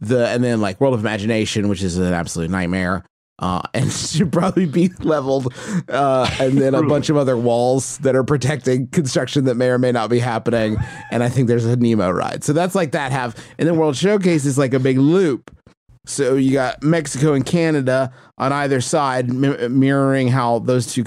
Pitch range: 120-160 Hz